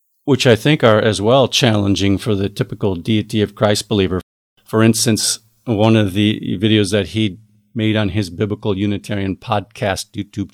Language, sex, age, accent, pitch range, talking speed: English, male, 50-69, American, 100-115 Hz, 165 wpm